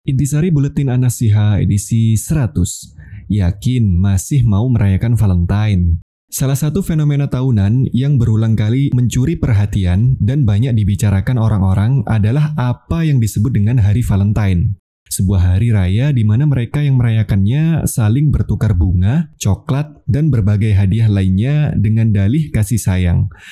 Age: 20-39